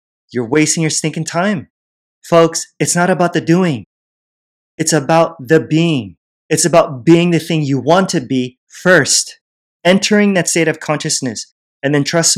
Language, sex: English, male